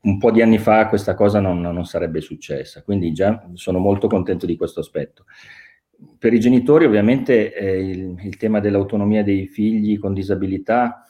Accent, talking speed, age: native, 175 wpm, 40-59